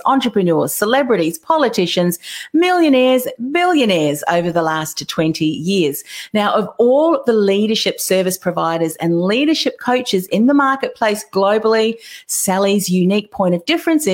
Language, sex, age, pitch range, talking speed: English, female, 40-59, 170-230 Hz, 125 wpm